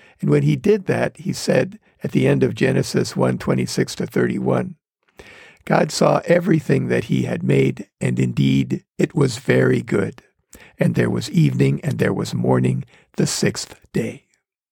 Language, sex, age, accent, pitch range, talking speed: English, male, 60-79, American, 140-175 Hz, 155 wpm